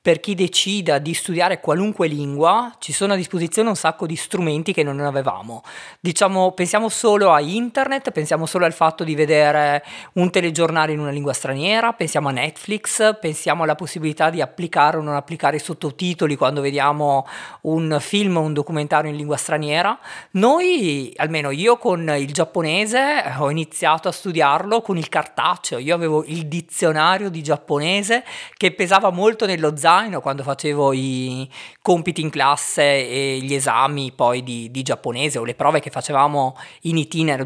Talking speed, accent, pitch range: 165 wpm, native, 150-185 Hz